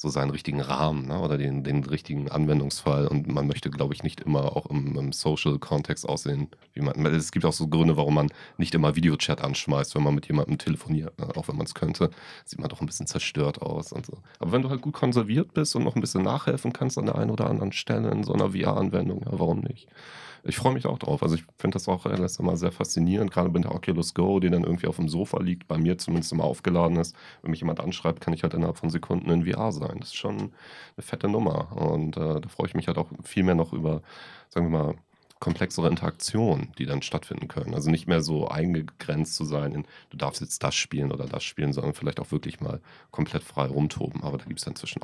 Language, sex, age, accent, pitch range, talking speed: German, male, 40-59, German, 75-85 Hz, 245 wpm